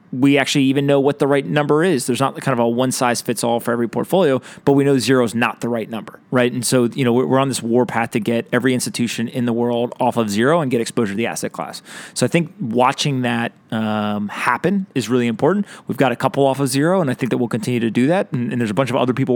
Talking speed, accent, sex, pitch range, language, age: 280 wpm, American, male, 115-135 Hz, English, 30-49